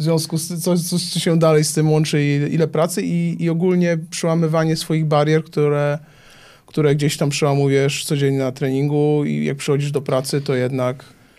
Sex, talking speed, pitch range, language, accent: male, 190 wpm, 140-170 Hz, Polish, native